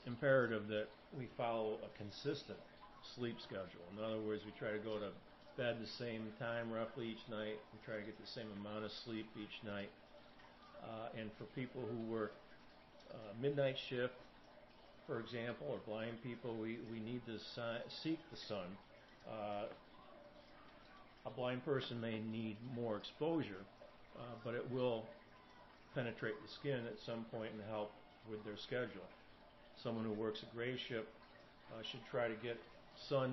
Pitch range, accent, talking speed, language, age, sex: 105-125 Hz, American, 160 wpm, English, 50-69, male